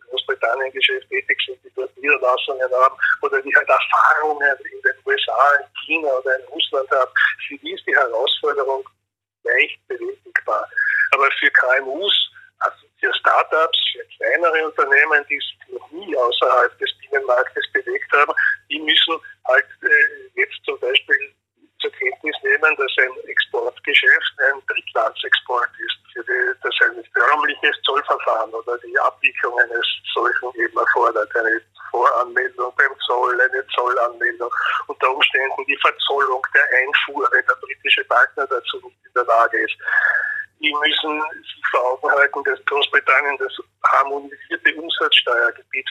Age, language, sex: 50-69, German, male